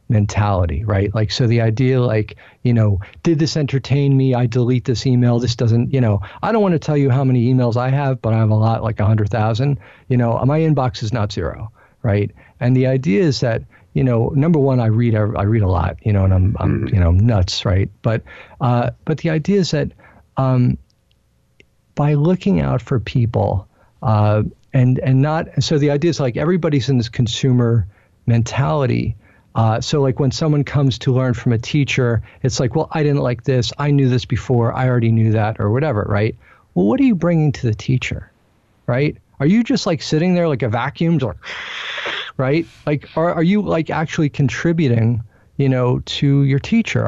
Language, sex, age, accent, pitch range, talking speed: English, male, 50-69, American, 110-145 Hz, 205 wpm